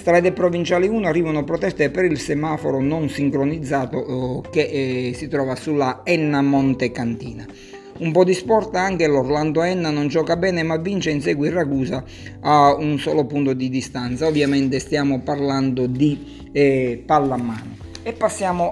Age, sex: 50-69, male